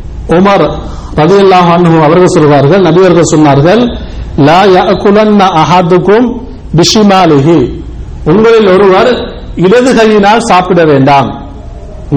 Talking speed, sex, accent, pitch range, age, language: 105 wpm, male, Indian, 150-195 Hz, 50-69, English